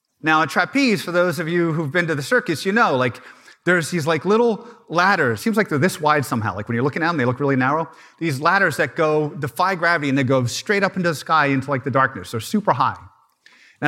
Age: 30-49